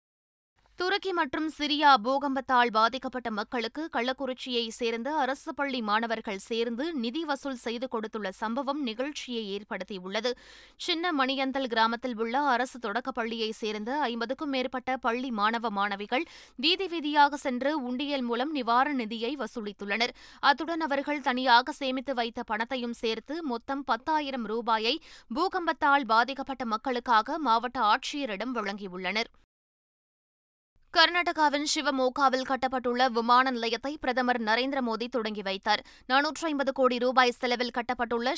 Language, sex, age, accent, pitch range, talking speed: Tamil, female, 20-39, native, 230-275 Hz, 110 wpm